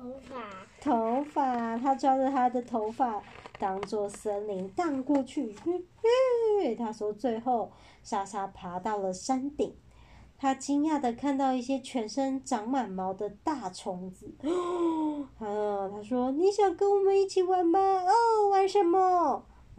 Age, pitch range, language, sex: 30-49, 220-335 Hz, Chinese, male